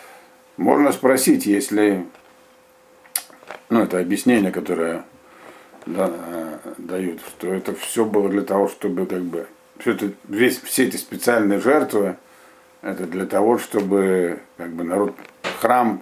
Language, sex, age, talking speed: Russian, male, 50-69, 125 wpm